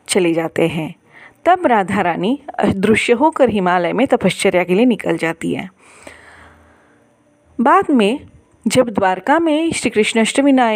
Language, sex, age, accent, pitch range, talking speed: Hindi, female, 40-59, native, 195-280 Hz, 135 wpm